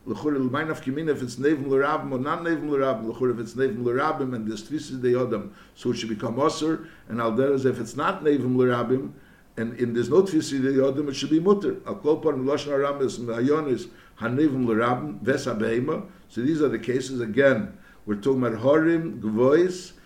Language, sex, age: English, male, 60-79